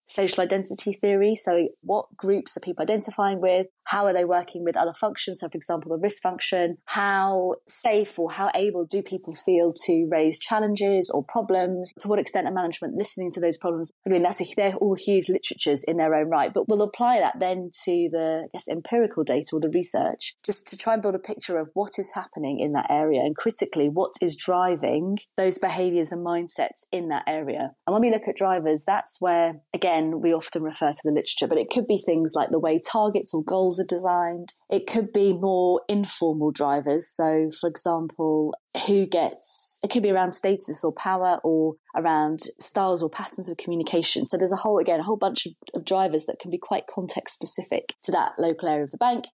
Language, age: English, 20-39